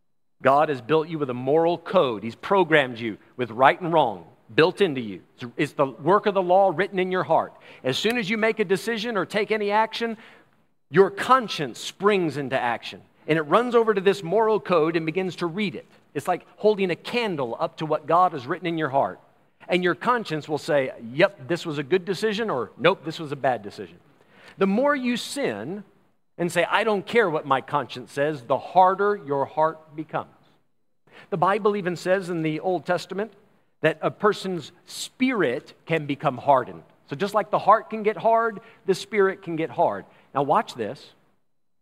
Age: 40-59